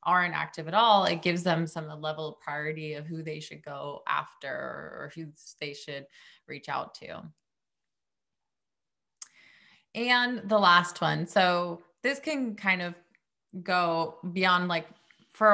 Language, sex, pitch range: English, female, 160-200 Hz